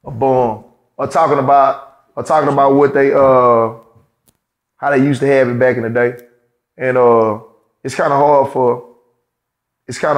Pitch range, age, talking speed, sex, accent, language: 120-145 Hz, 20-39, 175 wpm, male, American, English